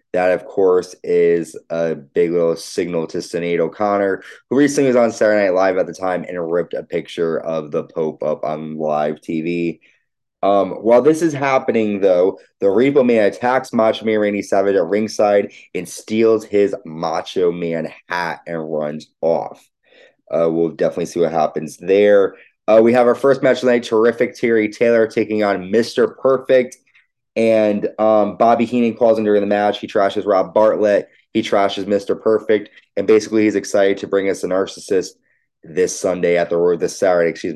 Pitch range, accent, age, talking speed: 95-120 Hz, American, 20-39, 175 wpm